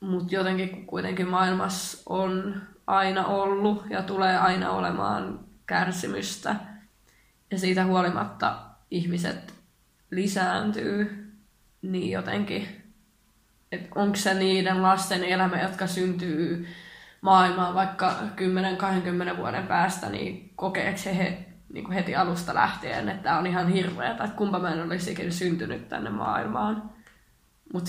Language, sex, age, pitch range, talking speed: Finnish, female, 20-39, 180-200 Hz, 110 wpm